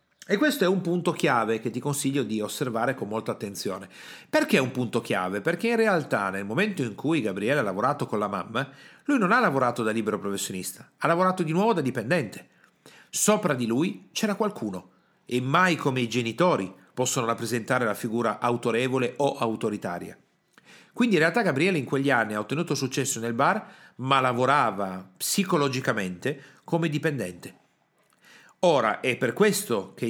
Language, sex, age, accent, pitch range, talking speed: Italian, male, 40-59, native, 115-165 Hz, 165 wpm